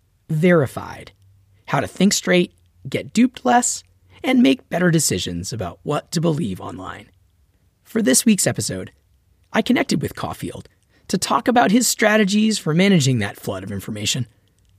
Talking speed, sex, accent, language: 145 wpm, male, American, English